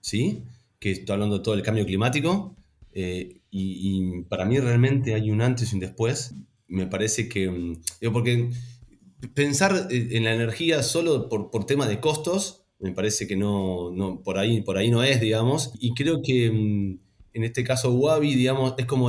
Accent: Argentinian